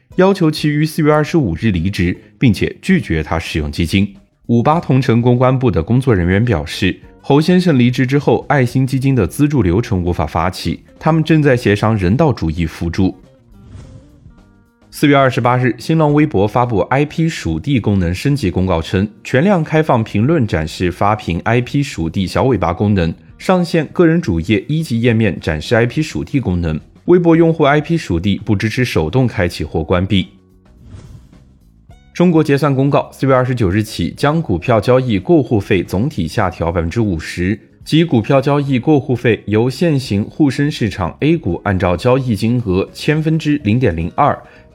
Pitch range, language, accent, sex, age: 95-140 Hz, Chinese, native, male, 20-39